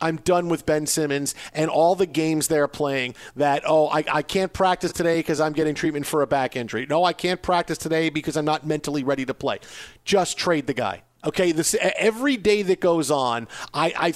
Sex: male